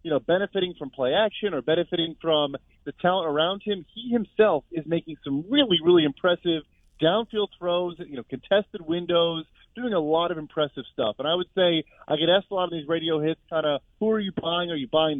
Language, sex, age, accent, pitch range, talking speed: English, male, 30-49, American, 150-180 Hz, 215 wpm